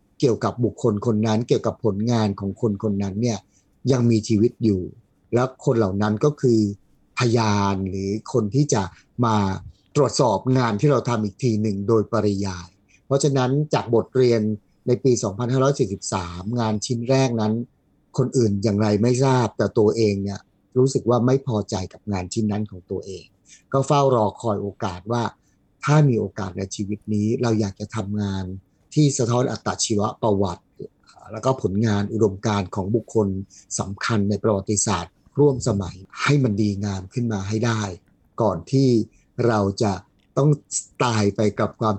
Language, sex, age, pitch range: Thai, male, 30-49, 100-125 Hz